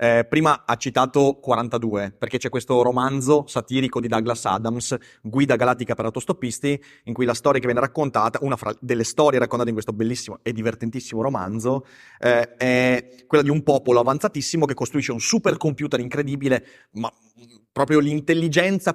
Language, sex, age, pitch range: Italian, male, 30-49, 120-160 Hz